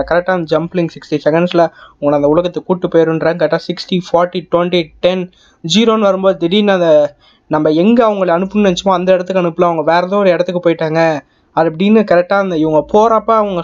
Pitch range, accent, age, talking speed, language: 165-210 Hz, native, 20-39, 130 wpm, Tamil